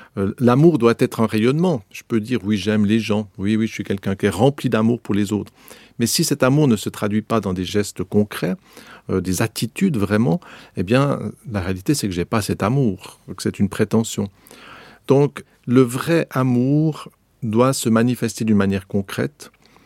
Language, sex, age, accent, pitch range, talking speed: French, male, 50-69, French, 100-120 Hz, 195 wpm